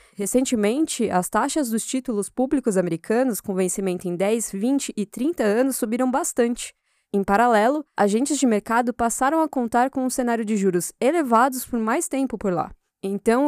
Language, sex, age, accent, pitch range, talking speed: Portuguese, female, 10-29, Brazilian, 205-270 Hz, 165 wpm